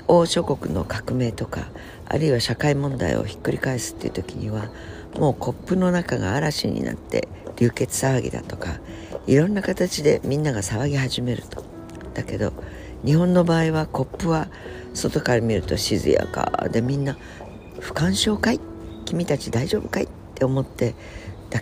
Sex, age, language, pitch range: female, 60-79, Japanese, 100-145 Hz